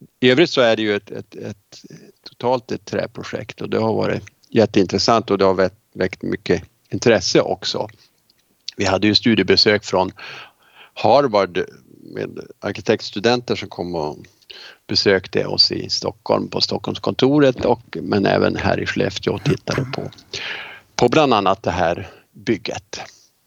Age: 50-69